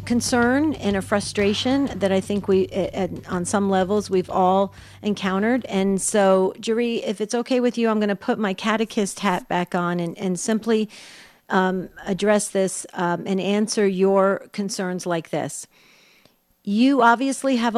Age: 50-69